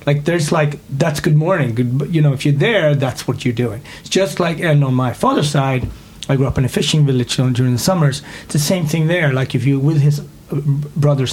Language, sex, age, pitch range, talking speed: English, male, 30-49, 130-150 Hz, 240 wpm